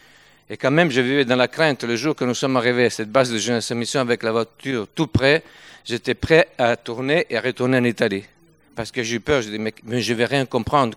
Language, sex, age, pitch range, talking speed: French, male, 50-69, 115-140 Hz, 250 wpm